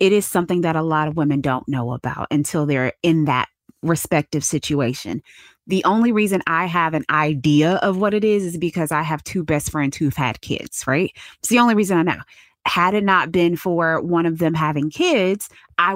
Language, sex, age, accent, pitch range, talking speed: English, female, 20-39, American, 145-180 Hz, 210 wpm